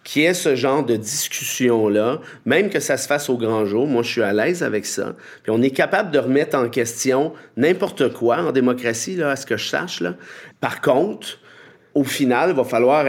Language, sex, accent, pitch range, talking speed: English, male, Canadian, 110-135 Hz, 215 wpm